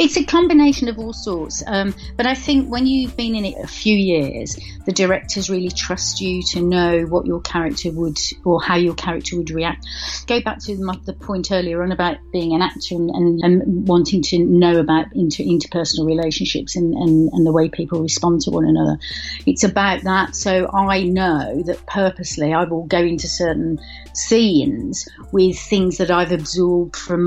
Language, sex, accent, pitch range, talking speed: English, female, British, 170-195 Hz, 185 wpm